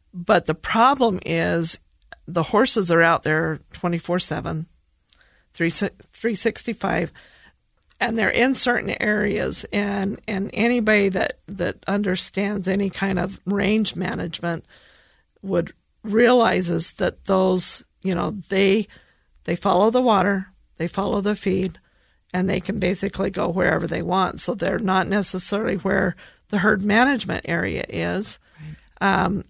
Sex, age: female, 40-59